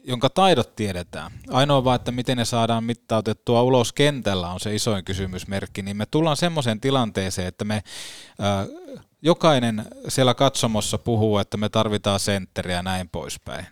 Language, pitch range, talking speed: Finnish, 105-135 Hz, 150 wpm